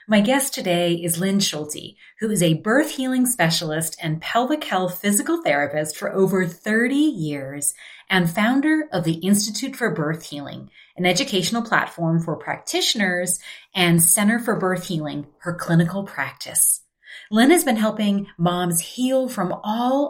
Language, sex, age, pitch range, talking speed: English, female, 30-49, 170-215 Hz, 150 wpm